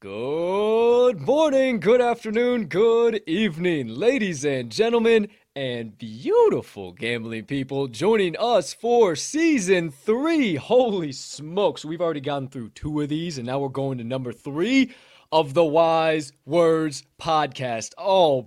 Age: 20-39